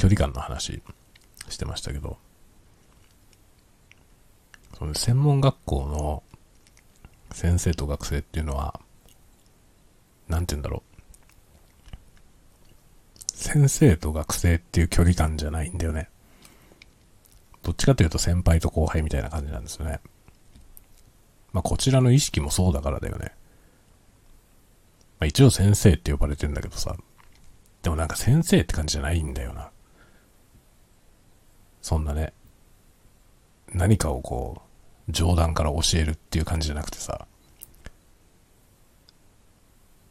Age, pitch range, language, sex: 50-69, 80-100 Hz, Japanese, male